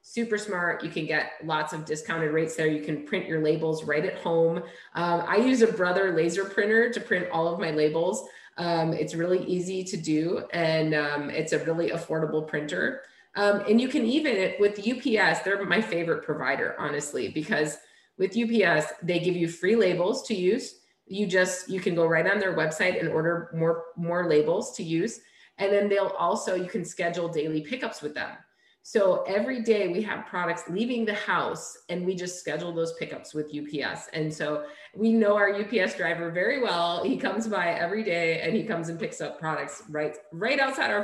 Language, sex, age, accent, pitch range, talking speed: English, female, 30-49, American, 160-205 Hz, 195 wpm